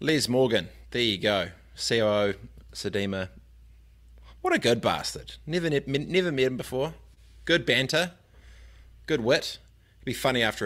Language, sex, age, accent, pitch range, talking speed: English, male, 20-39, Australian, 95-120 Hz, 135 wpm